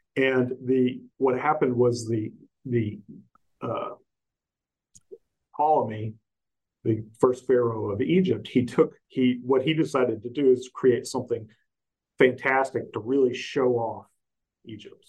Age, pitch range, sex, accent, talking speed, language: 50-69, 115-130 Hz, male, American, 125 wpm, English